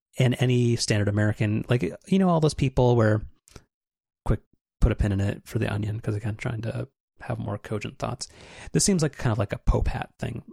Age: 30-49